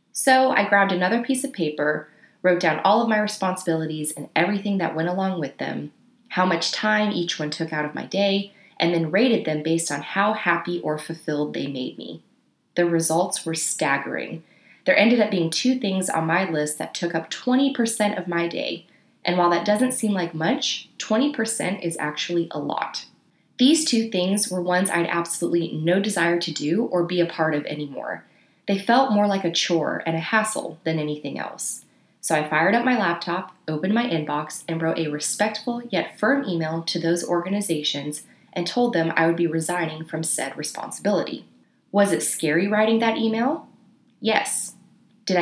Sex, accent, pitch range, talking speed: female, American, 160-210 Hz, 190 wpm